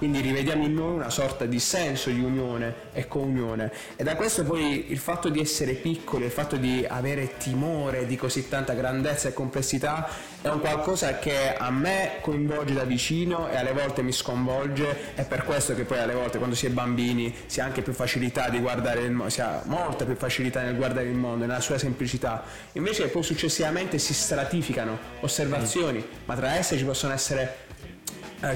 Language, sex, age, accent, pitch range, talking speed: Italian, male, 20-39, native, 120-145 Hz, 190 wpm